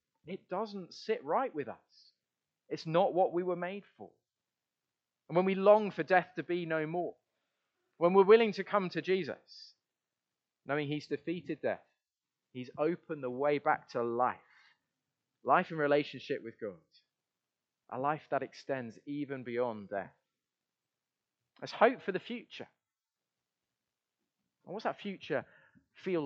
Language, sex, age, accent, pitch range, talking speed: English, male, 30-49, British, 120-175 Hz, 145 wpm